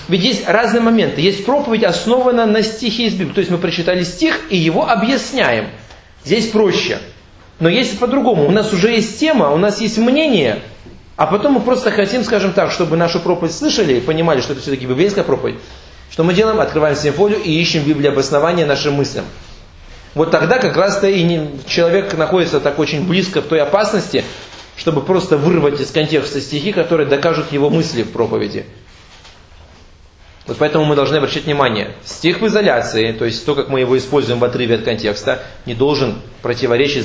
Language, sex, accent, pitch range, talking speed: Russian, male, native, 115-180 Hz, 180 wpm